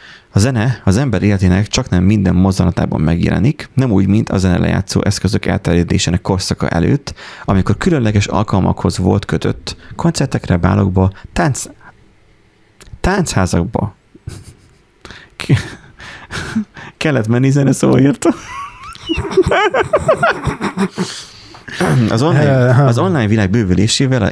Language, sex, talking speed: Hungarian, male, 95 wpm